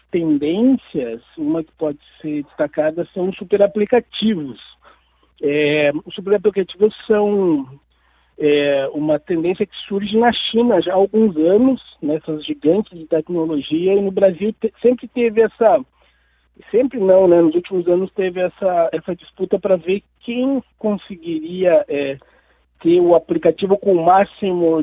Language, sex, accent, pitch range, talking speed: Portuguese, male, Brazilian, 150-190 Hz, 140 wpm